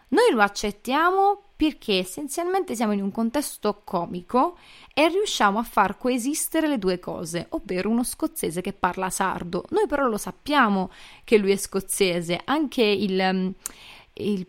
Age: 20-39